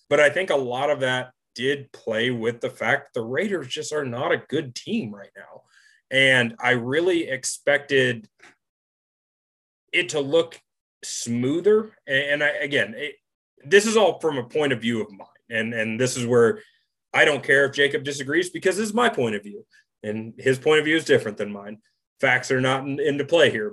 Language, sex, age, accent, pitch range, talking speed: English, male, 30-49, American, 115-145 Hz, 195 wpm